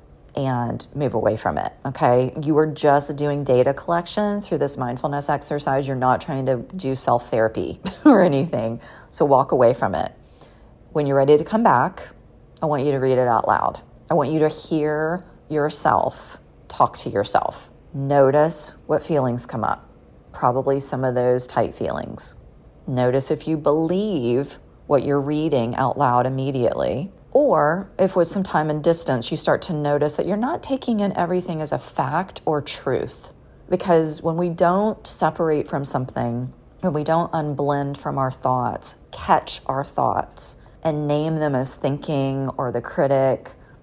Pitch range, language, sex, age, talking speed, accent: 130-165 Hz, English, female, 40-59, 165 wpm, American